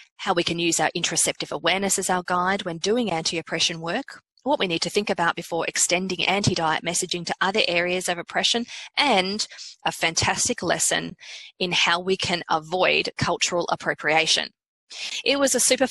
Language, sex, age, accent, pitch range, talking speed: English, female, 20-39, Australian, 175-230 Hz, 165 wpm